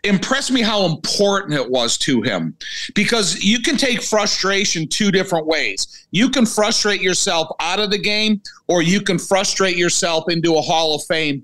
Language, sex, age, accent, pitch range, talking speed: English, male, 50-69, American, 165-200 Hz, 180 wpm